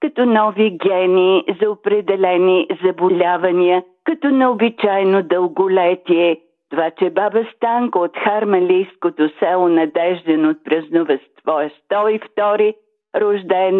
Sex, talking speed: female, 95 wpm